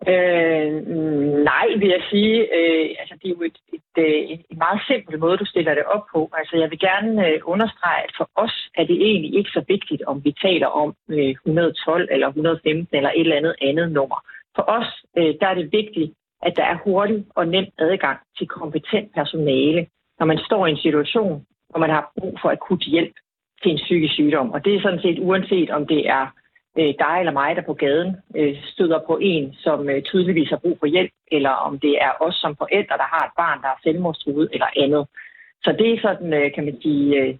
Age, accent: 40-59, native